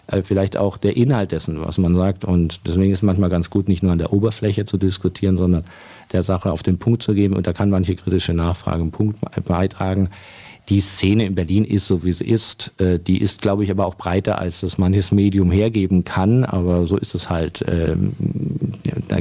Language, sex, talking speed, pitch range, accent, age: German, male, 210 wpm, 90-100 Hz, German, 50-69